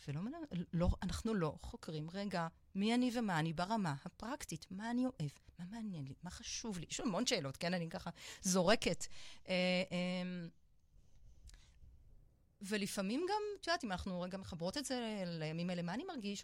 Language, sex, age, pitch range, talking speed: Hebrew, female, 30-49, 160-240 Hz, 170 wpm